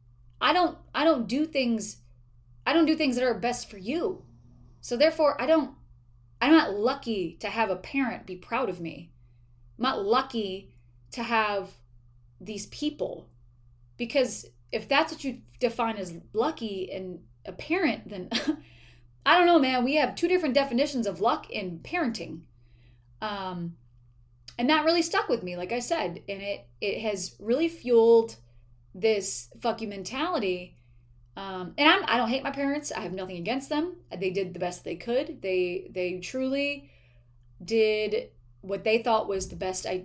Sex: female